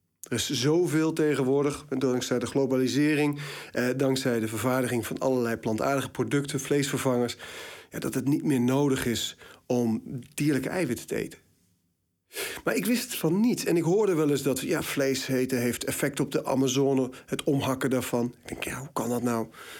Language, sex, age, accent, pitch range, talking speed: Dutch, male, 40-59, Dutch, 125-160 Hz, 175 wpm